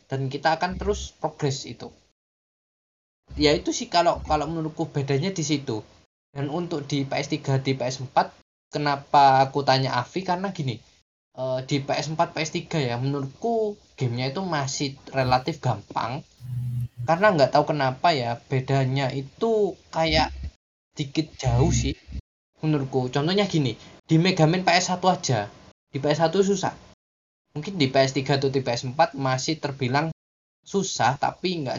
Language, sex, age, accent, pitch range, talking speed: Indonesian, male, 10-29, native, 135-170 Hz, 130 wpm